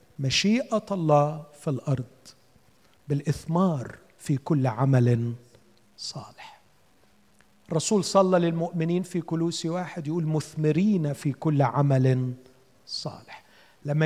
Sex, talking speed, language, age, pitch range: male, 95 wpm, Arabic, 50-69, 145-195 Hz